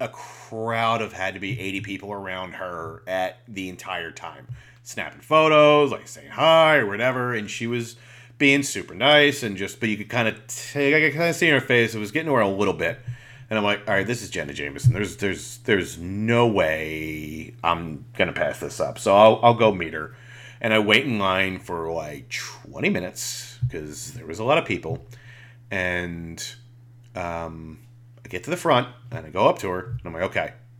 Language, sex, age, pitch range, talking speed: English, male, 30-49, 100-125 Hz, 205 wpm